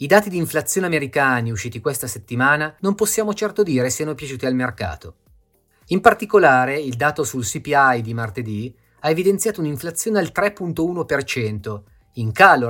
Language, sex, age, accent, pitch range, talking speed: Italian, male, 30-49, native, 115-175 Hz, 145 wpm